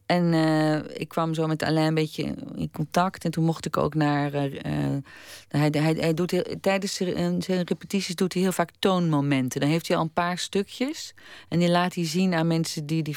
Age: 40-59